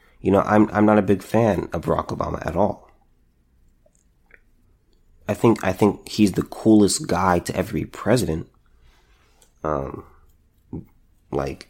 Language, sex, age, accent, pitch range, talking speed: English, male, 30-49, American, 85-110 Hz, 135 wpm